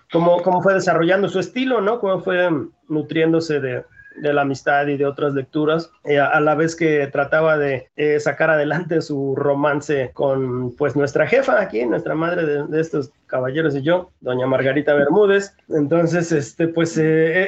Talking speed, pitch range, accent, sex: 170 wpm, 135-165 Hz, Mexican, male